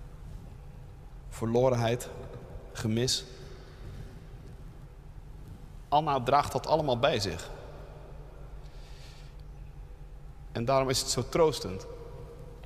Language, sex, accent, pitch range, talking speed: Dutch, male, Dutch, 130-185 Hz, 65 wpm